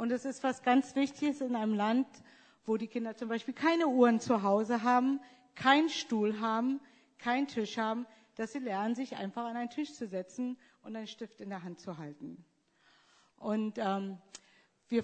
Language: German